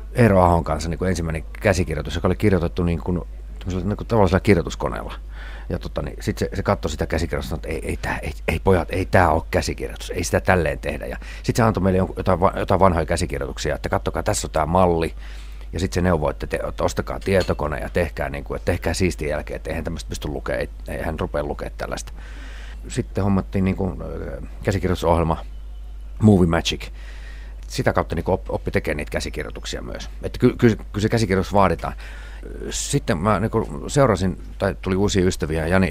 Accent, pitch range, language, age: native, 75-95 Hz, Finnish, 40-59